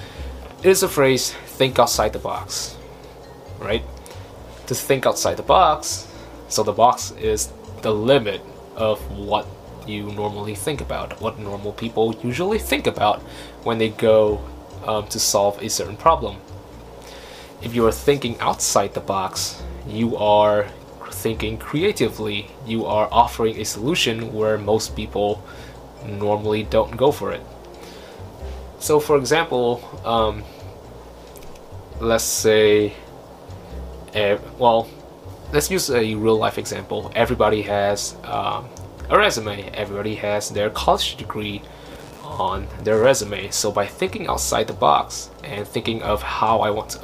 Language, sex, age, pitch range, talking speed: Vietnamese, male, 20-39, 95-115 Hz, 130 wpm